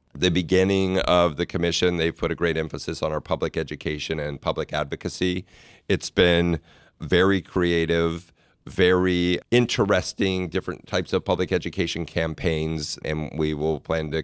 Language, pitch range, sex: English, 80-90 Hz, male